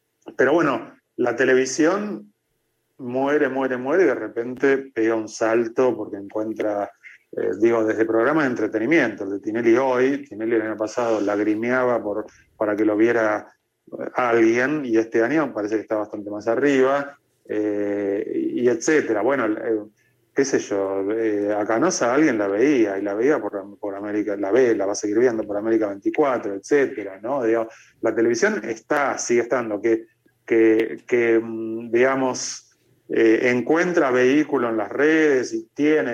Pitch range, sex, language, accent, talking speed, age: 110-130 Hz, male, Spanish, Argentinian, 150 wpm, 30-49